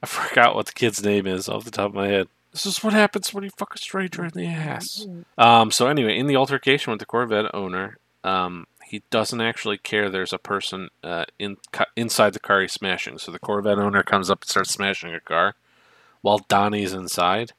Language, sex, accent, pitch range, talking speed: English, male, American, 95-115 Hz, 220 wpm